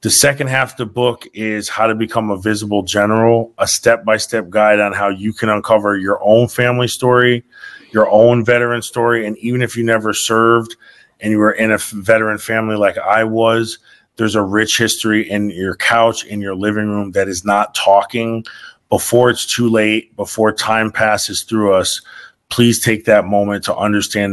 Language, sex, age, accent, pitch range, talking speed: English, male, 30-49, American, 100-115 Hz, 185 wpm